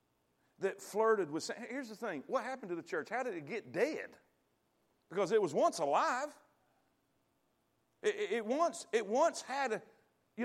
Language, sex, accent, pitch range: English, male, American, 240-315 Hz